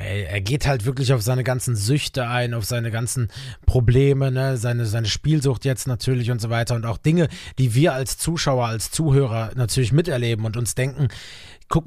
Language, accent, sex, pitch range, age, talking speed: English, German, male, 110-140 Hz, 20-39, 185 wpm